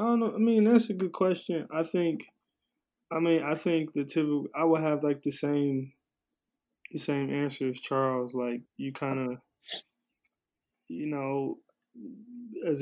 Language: English